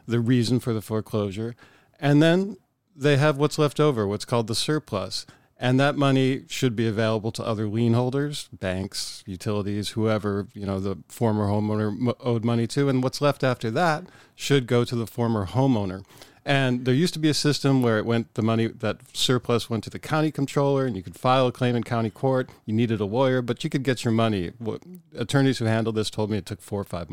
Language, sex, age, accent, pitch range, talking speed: English, male, 40-59, American, 105-130 Hz, 215 wpm